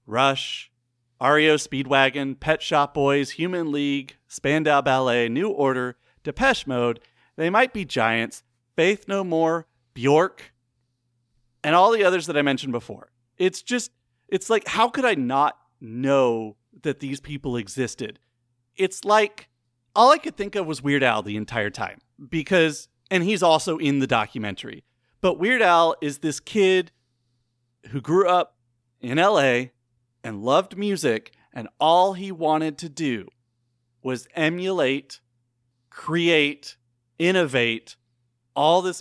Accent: American